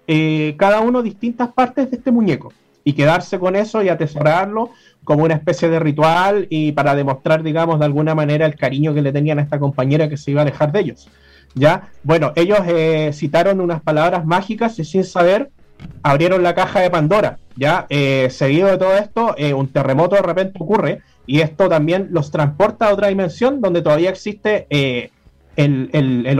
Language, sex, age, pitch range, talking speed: Spanish, male, 30-49, 150-195 Hz, 190 wpm